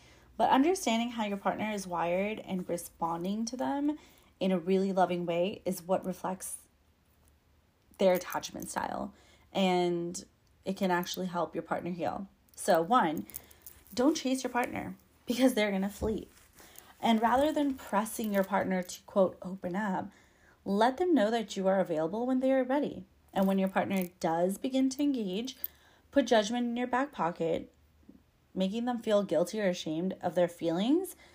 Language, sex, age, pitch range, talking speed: English, female, 30-49, 175-230 Hz, 165 wpm